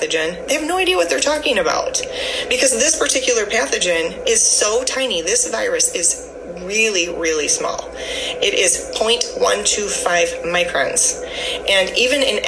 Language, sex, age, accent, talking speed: English, female, 30-49, American, 135 wpm